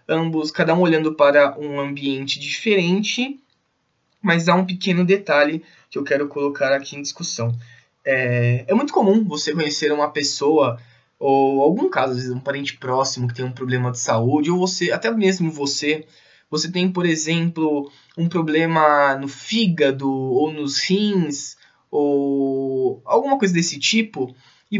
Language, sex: Portuguese, male